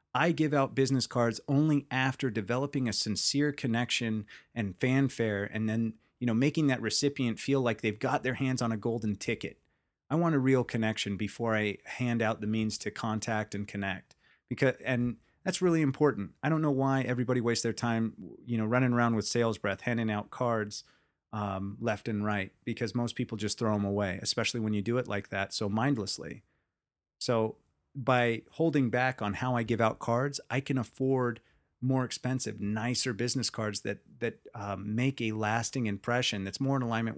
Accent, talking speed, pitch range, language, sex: American, 190 wpm, 110-130 Hz, English, male